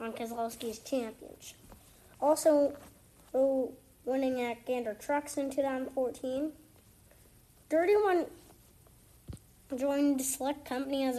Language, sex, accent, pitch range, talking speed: English, female, American, 245-300 Hz, 85 wpm